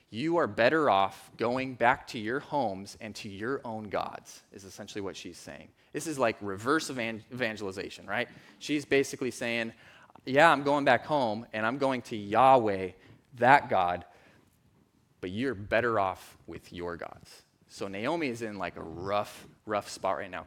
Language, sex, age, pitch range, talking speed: English, male, 20-39, 115-165 Hz, 170 wpm